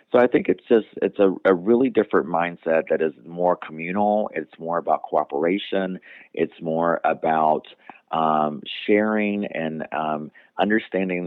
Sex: male